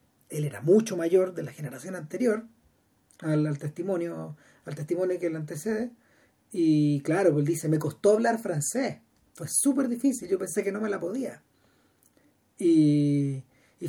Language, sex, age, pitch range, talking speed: Spanish, male, 40-59, 155-225 Hz, 160 wpm